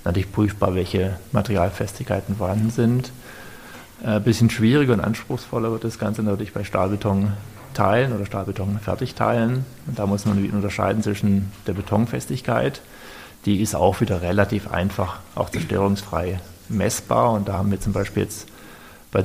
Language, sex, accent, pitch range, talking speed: German, male, German, 100-115 Hz, 135 wpm